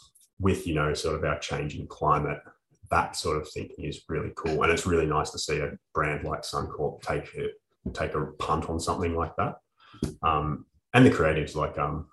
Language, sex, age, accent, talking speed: English, male, 20-39, Australian, 200 wpm